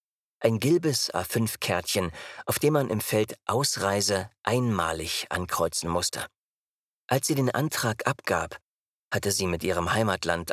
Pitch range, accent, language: 95-120 Hz, German, German